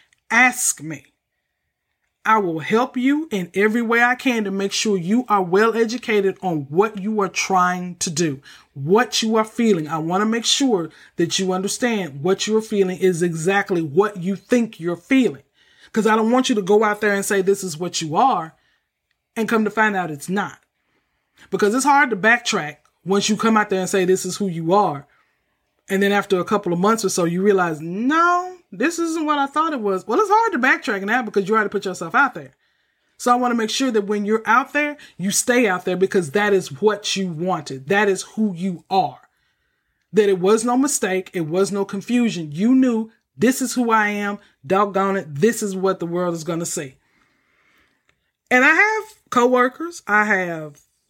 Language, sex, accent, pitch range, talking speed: English, male, American, 185-230 Hz, 210 wpm